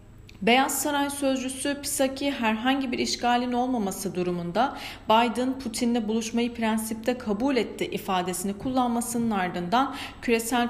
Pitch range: 200-255 Hz